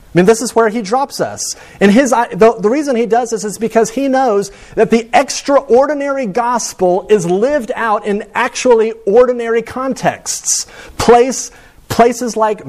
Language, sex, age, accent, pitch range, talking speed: English, male, 40-59, American, 165-230 Hz, 160 wpm